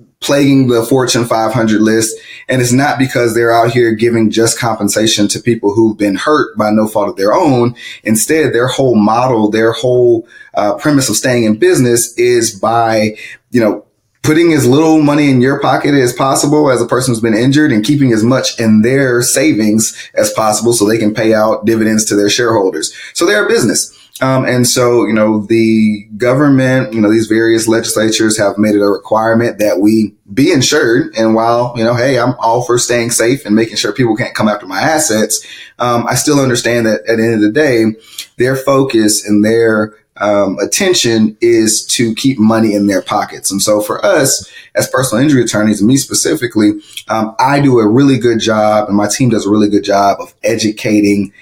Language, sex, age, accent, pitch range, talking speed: English, male, 30-49, American, 110-125 Hz, 200 wpm